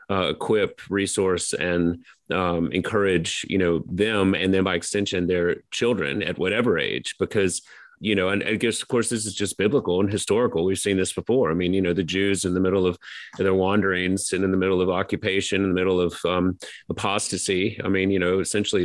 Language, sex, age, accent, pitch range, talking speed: English, male, 30-49, American, 95-105 Hz, 205 wpm